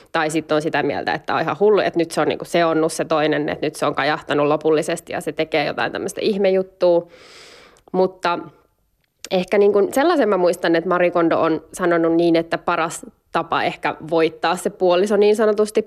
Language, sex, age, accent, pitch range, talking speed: Finnish, female, 20-39, native, 160-200 Hz, 190 wpm